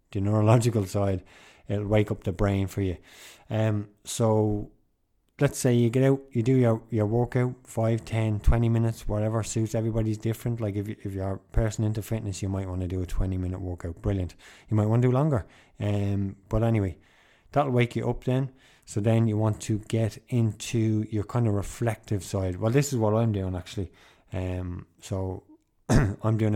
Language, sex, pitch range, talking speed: English, male, 95-115 Hz, 190 wpm